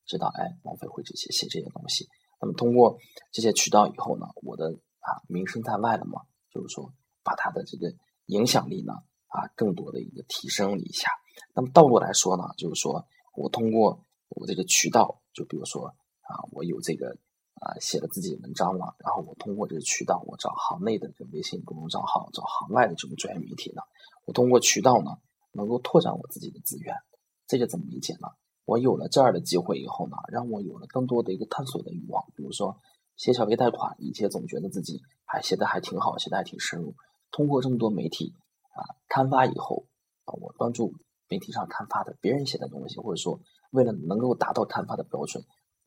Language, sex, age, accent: Chinese, male, 20-39, native